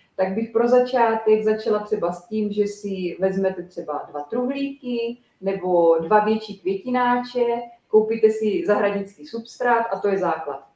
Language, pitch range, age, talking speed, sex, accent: Czech, 190-225 Hz, 30-49, 145 wpm, female, native